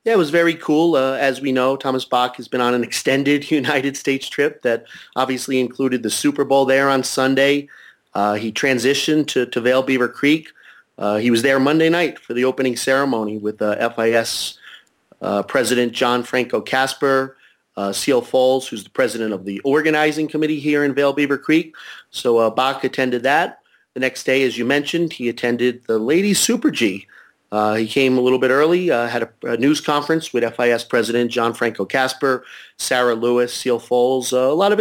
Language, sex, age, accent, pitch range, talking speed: English, male, 40-59, American, 120-145 Hz, 195 wpm